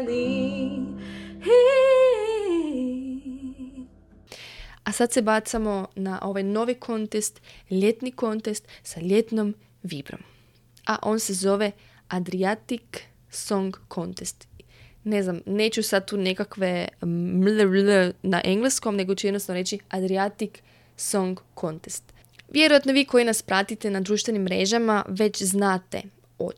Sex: female